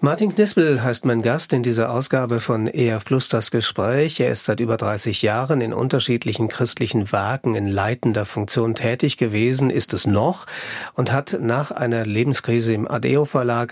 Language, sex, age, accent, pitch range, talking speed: German, male, 40-59, German, 115-150 Hz, 170 wpm